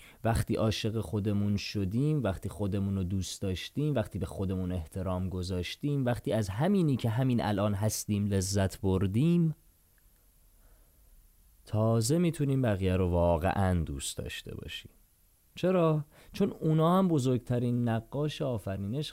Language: Persian